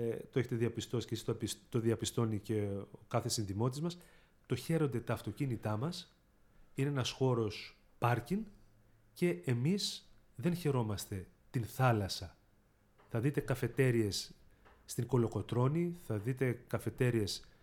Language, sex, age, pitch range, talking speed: Greek, male, 30-49, 110-140 Hz, 115 wpm